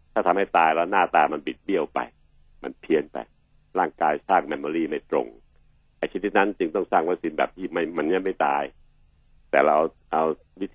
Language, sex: Thai, male